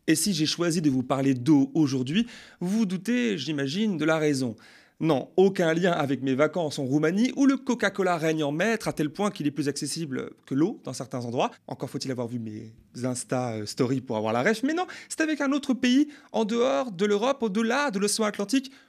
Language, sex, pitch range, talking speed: French, male, 140-210 Hz, 215 wpm